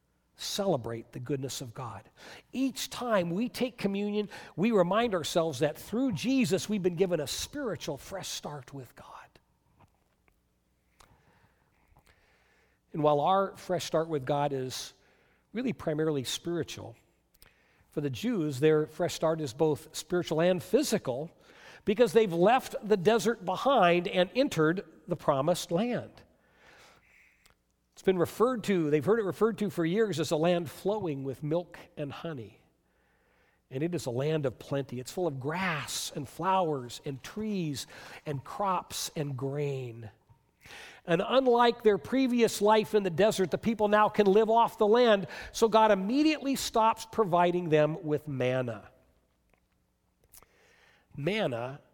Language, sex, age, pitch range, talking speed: English, male, 60-79, 135-205 Hz, 140 wpm